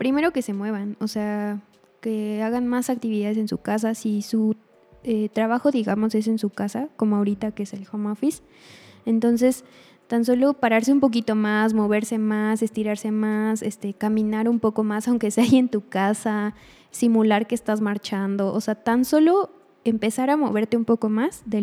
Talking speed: 185 wpm